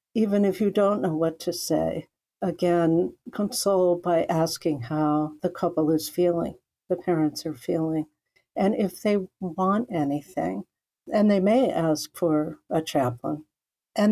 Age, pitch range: 60-79, 175-210 Hz